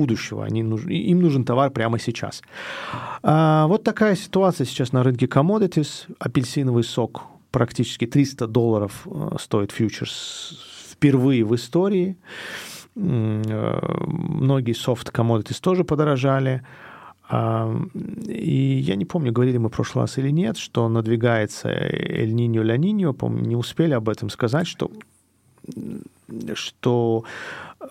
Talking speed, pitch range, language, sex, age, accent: 115 wpm, 115-165 Hz, Russian, male, 40-59, native